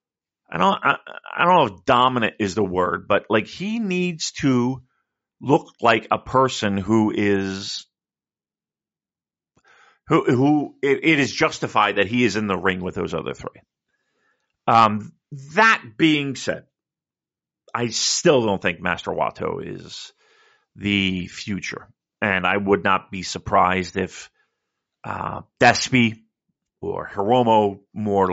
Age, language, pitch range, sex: 40-59, English, 100-135 Hz, male